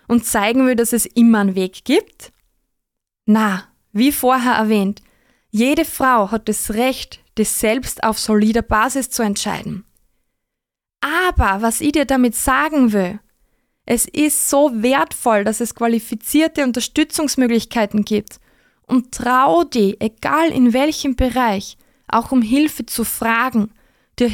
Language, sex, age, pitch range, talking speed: German, female, 20-39, 215-265 Hz, 135 wpm